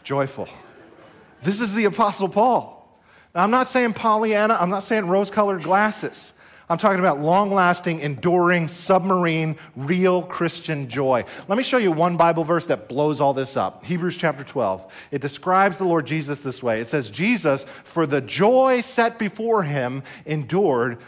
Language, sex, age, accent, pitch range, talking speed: English, male, 40-59, American, 165-215 Hz, 165 wpm